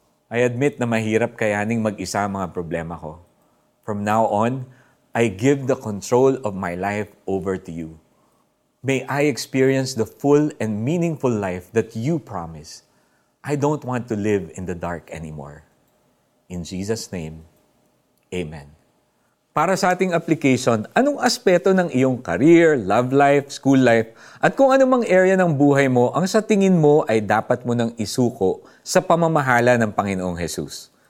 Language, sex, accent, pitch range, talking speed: Filipino, male, native, 95-145 Hz, 155 wpm